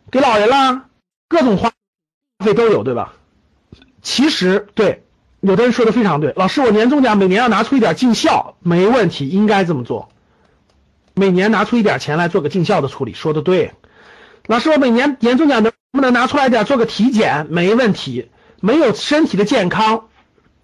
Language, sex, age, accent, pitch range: Chinese, male, 50-69, native, 175-260 Hz